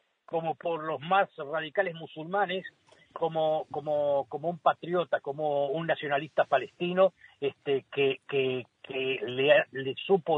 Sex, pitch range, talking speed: male, 145-195 Hz, 125 wpm